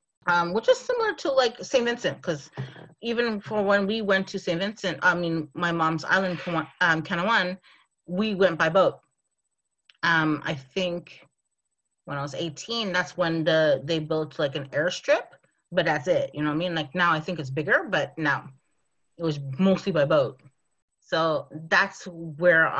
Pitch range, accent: 150-185 Hz, American